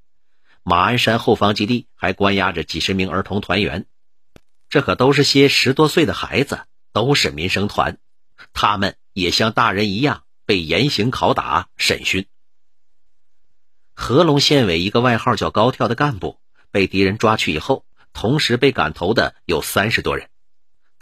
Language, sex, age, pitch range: Chinese, male, 50-69, 95-125 Hz